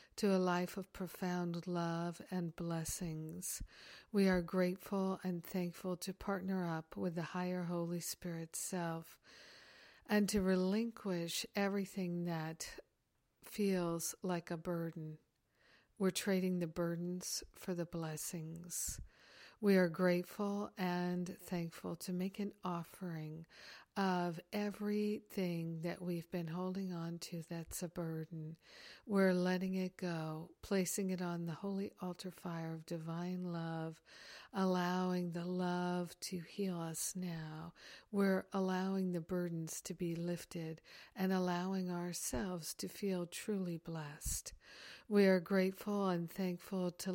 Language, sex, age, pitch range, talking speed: English, female, 60-79, 170-190 Hz, 125 wpm